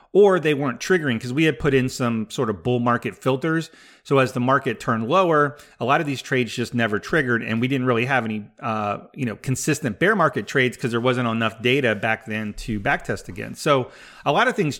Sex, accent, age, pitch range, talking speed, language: male, American, 30-49, 120-150 Hz, 235 wpm, English